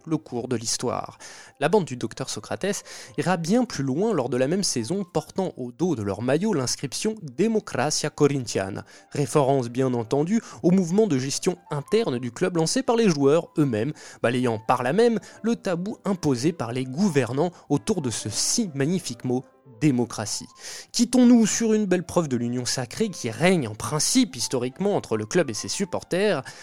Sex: male